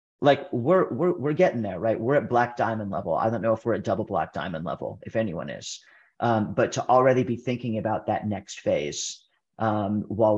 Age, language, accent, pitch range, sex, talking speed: 30-49, English, American, 105-120 Hz, male, 215 wpm